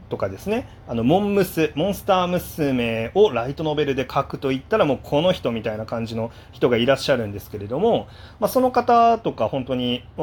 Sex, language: male, Japanese